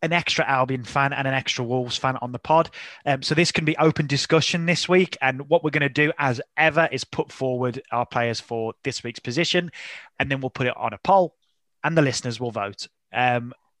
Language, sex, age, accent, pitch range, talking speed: English, male, 20-39, British, 115-145 Hz, 225 wpm